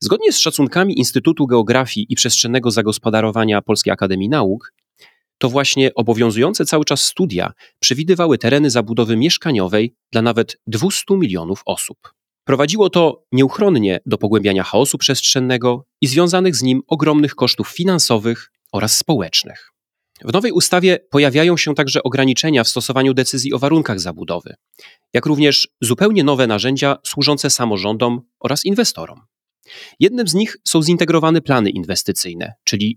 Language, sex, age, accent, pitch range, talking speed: Polish, male, 30-49, native, 115-160 Hz, 130 wpm